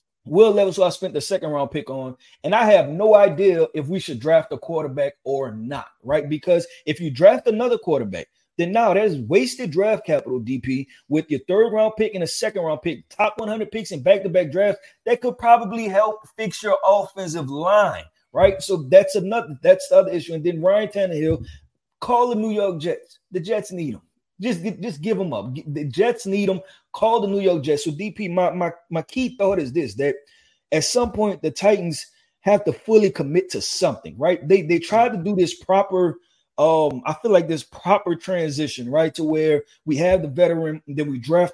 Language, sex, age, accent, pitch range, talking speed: English, male, 30-49, American, 155-210 Hz, 205 wpm